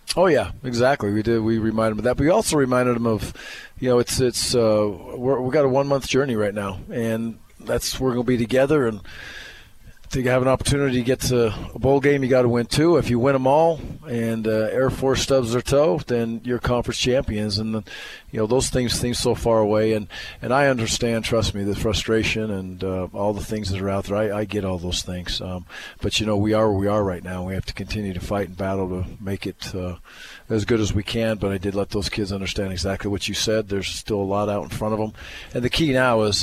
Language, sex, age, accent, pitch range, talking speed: English, male, 40-59, American, 95-120 Hz, 255 wpm